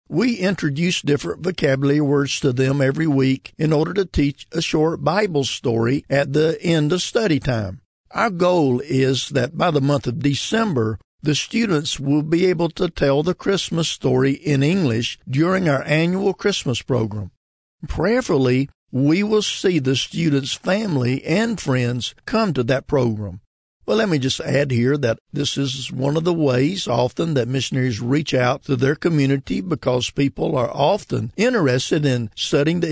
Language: English